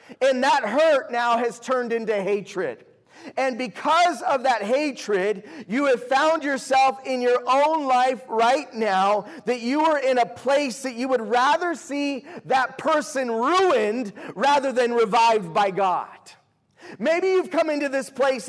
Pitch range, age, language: 245-300 Hz, 40-59, English